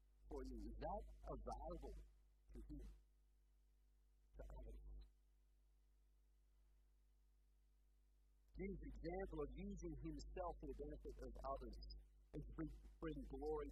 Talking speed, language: 85 wpm, English